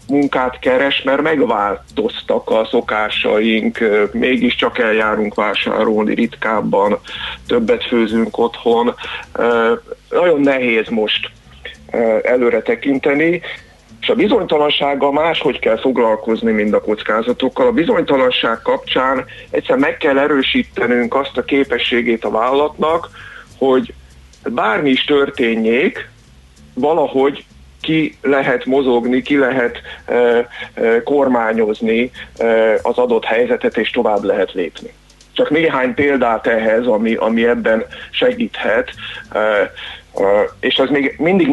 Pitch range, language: 115-155 Hz, Hungarian